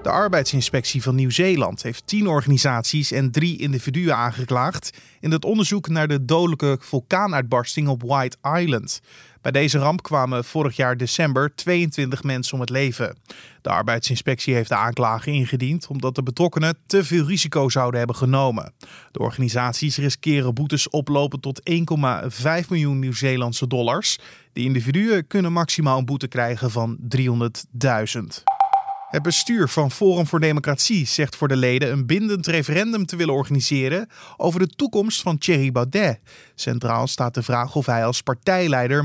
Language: Dutch